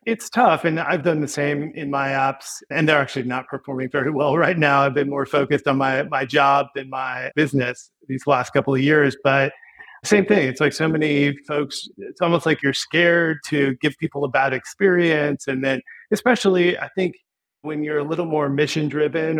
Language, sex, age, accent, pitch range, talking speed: English, male, 30-49, American, 140-170 Hz, 205 wpm